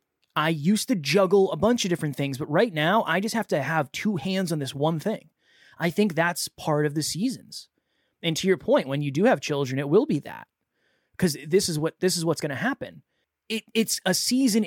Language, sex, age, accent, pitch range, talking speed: English, male, 20-39, American, 145-185 Hz, 225 wpm